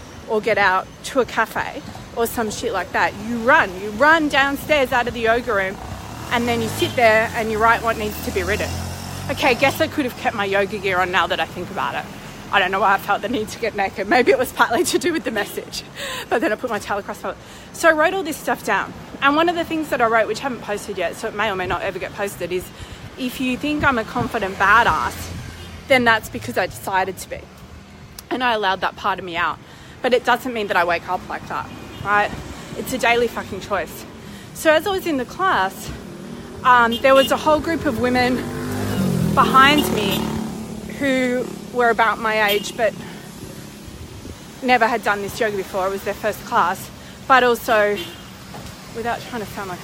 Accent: Australian